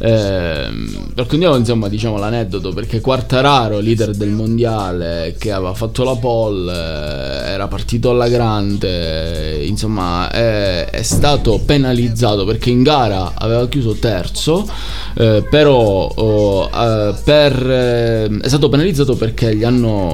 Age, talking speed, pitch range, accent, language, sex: 20-39, 130 wpm, 100-125 Hz, native, Italian, male